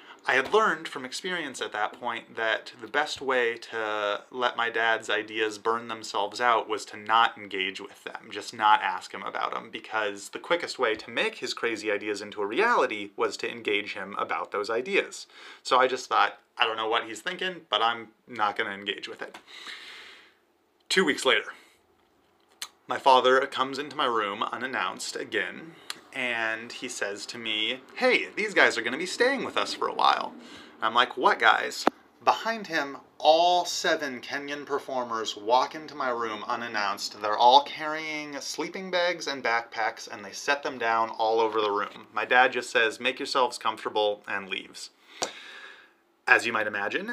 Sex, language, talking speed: male, English, 180 wpm